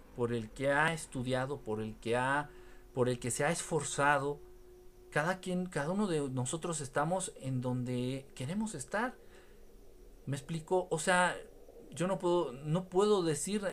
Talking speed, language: 155 wpm, Spanish